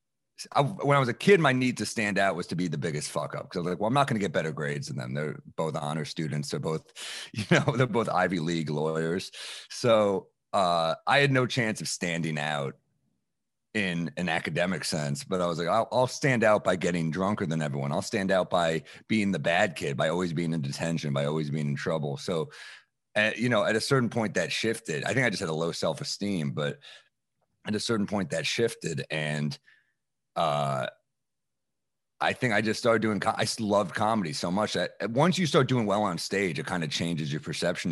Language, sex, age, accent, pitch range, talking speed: English, male, 30-49, American, 80-115 Hz, 225 wpm